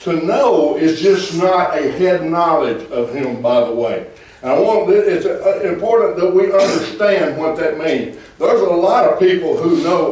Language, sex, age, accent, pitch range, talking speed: English, male, 60-79, American, 195-295 Hz, 185 wpm